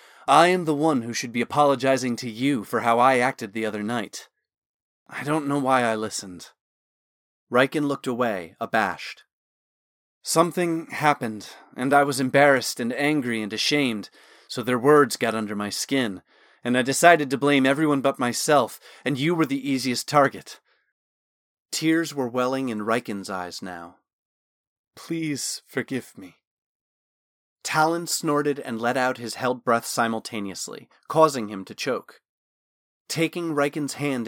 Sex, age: male, 30-49